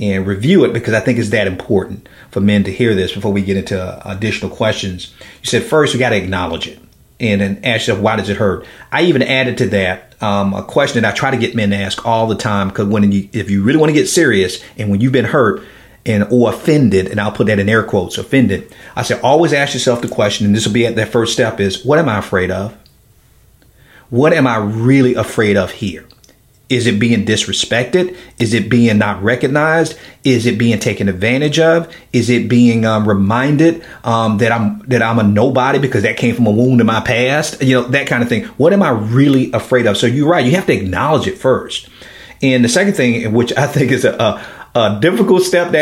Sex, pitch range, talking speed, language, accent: male, 105-130 Hz, 235 wpm, English, American